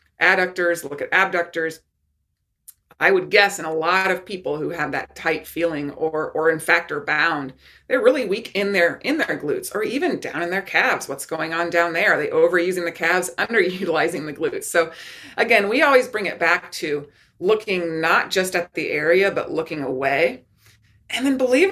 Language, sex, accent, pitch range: English, female, American, 160-230 Hz